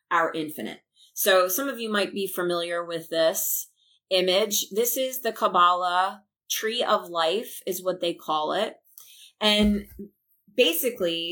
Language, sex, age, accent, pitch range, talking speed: English, female, 30-49, American, 180-220 Hz, 140 wpm